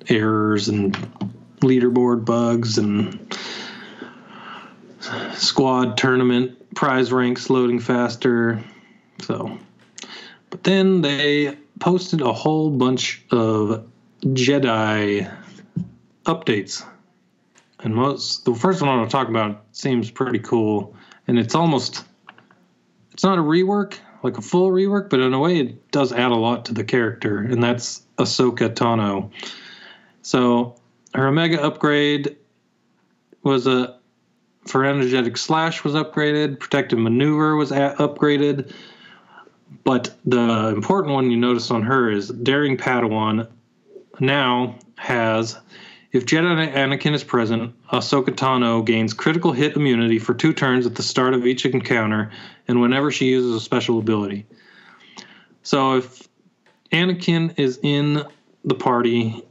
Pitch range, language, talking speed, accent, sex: 115-145 Hz, English, 125 wpm, American, male